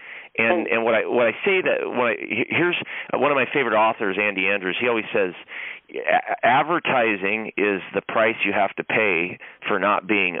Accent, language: American, English